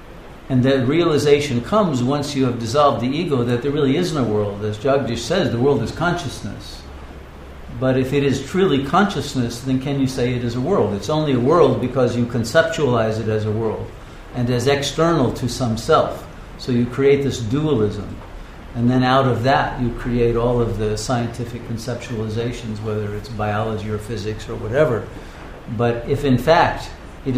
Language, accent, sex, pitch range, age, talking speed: English, American, male, 110-135 Hz, 50-69, 180 wpm